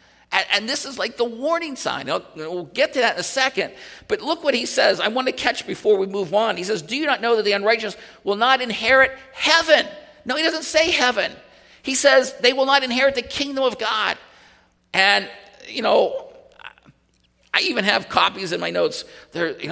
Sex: male